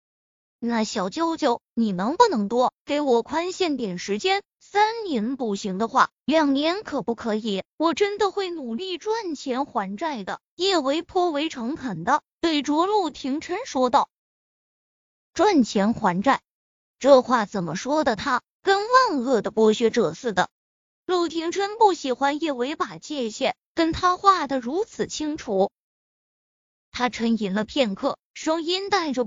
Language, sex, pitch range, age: Chinese, female, 235-345 Hz, 20-39